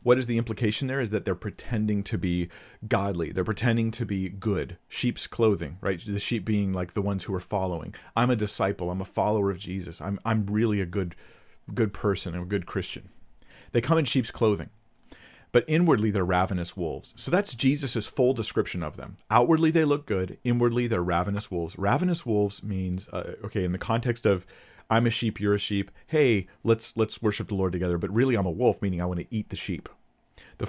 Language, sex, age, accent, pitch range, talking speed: English, male, 40-59, American, 90-115 Hz, 210 wpm